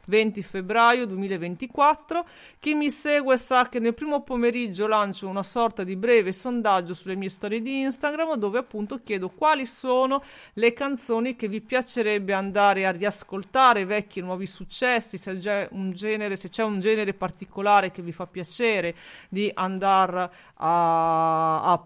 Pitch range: 190-240 Hz